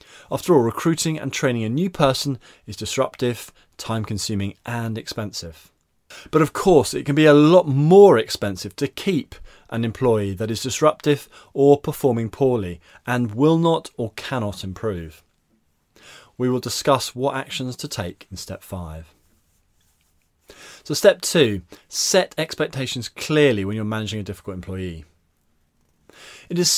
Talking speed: 140 wpm